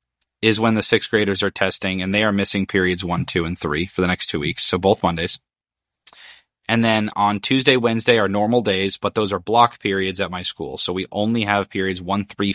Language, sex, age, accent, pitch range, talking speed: English, male, 20-39, American, 90-110 Hz, 225 wpm